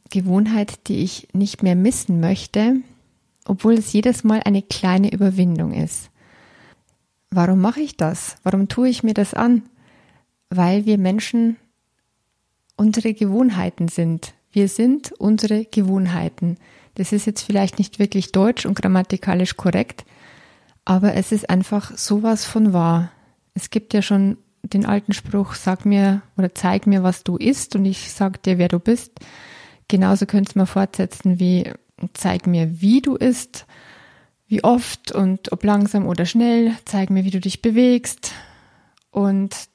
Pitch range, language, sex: 185-215 Hz, German, female